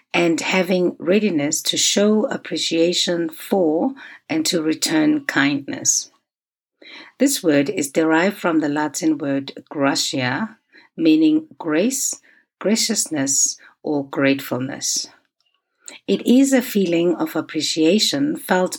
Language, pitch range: English, 160-260 Hz